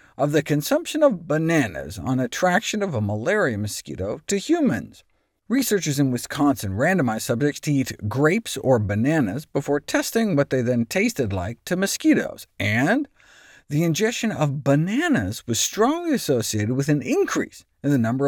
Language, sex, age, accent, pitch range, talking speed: English, male, 50-69, American, 125-190 Hz, 150 wpm